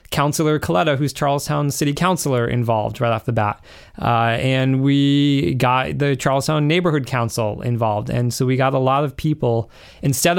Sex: male